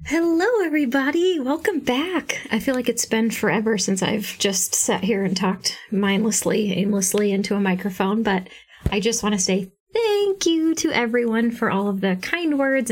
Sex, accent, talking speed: female, American, 175 wpm